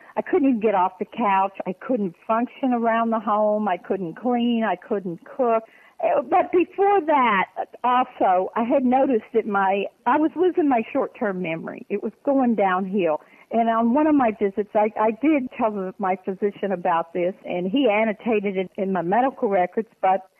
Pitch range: 210-265 Hz